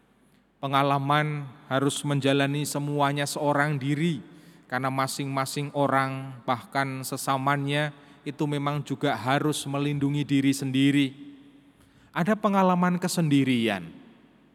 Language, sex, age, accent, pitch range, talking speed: Indonesian, male, 30-49, native, 135-180 Hz, 85 wpm